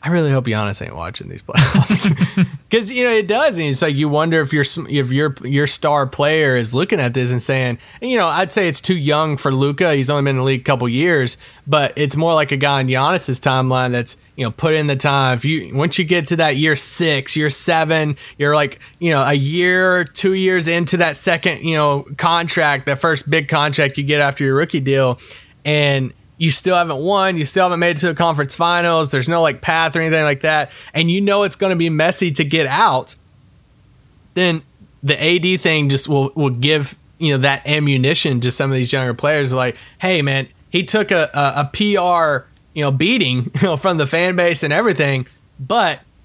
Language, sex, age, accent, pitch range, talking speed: English, male, 30-49, American, 135-170 Hz, 225 wpm